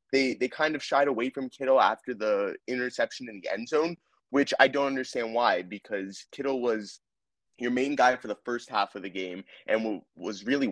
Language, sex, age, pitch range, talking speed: English, male, 20-39, 95-130 Hz, 205 wpm